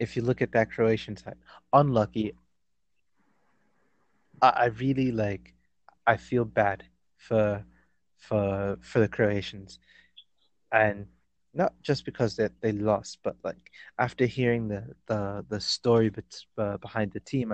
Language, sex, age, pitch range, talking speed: English, male, 20-39, 100-115 Hz, 135 wpm